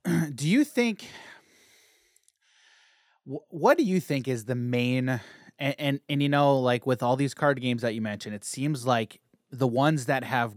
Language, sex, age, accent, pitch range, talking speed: English, male, 30-49, American, 120-165 Hz, 175 wpm